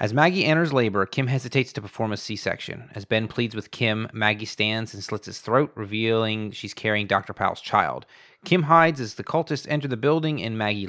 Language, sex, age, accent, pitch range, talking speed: English, male, 30-49, American, 105-125 Hz, 205 wpm